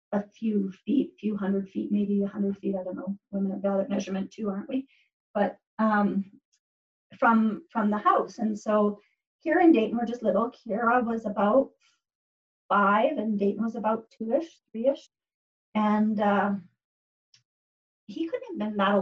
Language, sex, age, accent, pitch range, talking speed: English, female, 40-59, American, 200-245 Hz, 165 wpm